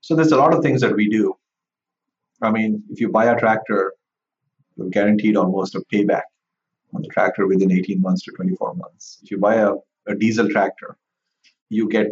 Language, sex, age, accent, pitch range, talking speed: English, male, 30-49, Indian, 95-125 Hz, 195 wpm